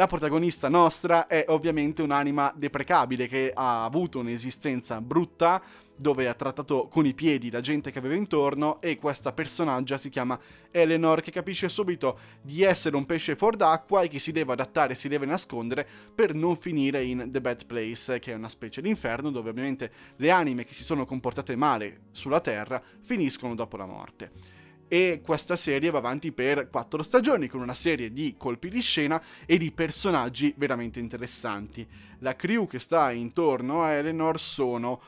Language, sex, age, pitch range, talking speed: Italian, male, 20-39, 120-160 Hz, 175 wpm